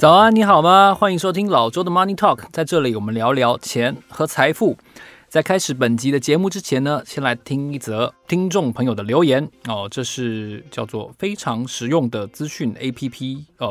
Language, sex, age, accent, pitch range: Chinese, male, 20-39, native, 115-150 Hz